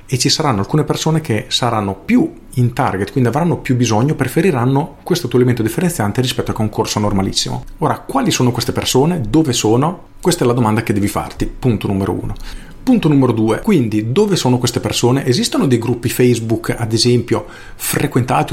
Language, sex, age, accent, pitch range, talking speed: Italian, male, 40-59, native, 105-130 Hz, 180 wpm